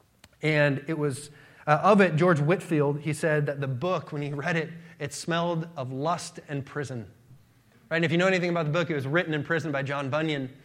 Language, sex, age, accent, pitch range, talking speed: English, male, 20-39, American, 135-165 Hz, 225 wpm